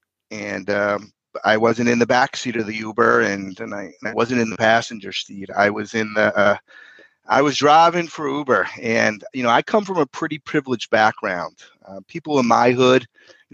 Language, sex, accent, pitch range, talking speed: English, male, American, 105-135 Hz, 205 wpm